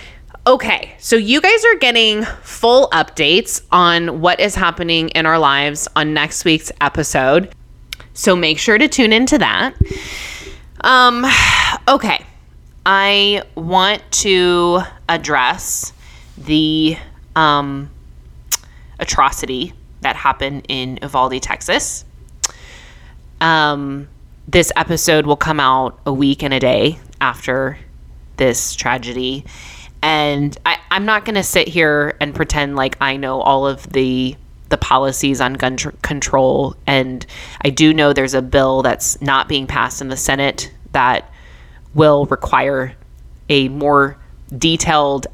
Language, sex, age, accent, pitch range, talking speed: English, female, 20-39, American, 125-155 Hz, 125 wpm